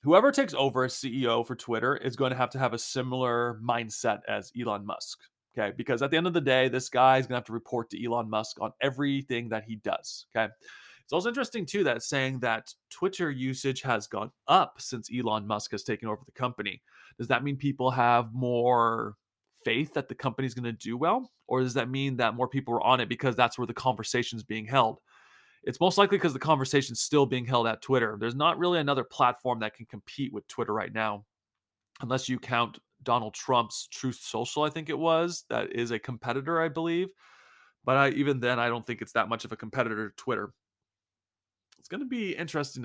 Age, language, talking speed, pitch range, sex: 30-49, English, 220 wpm, 115-135 Hz, male